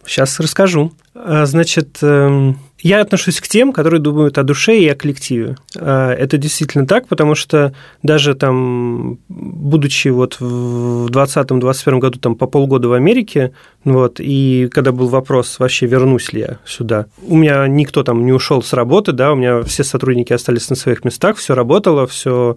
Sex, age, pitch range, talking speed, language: male, 30-49, 125-145 Hz, 160 wpm, Russian